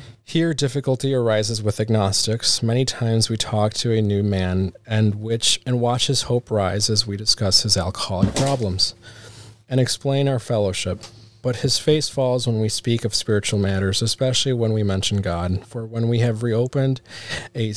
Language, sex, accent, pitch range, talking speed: English, male, American, 105-120 Hz, 170 wpm